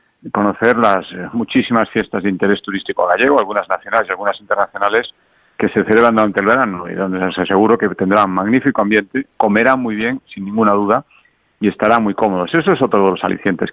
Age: 40-59